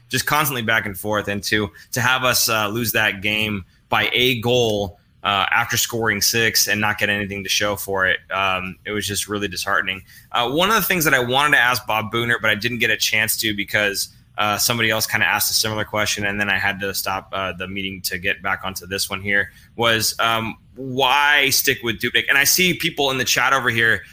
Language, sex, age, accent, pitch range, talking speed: English, male, 20-39, American, 105-135 Hz, 235 wpm